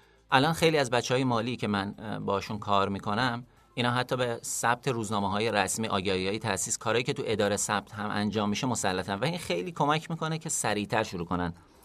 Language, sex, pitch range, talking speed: Persian, male, 105-140 Hz, 200 wpm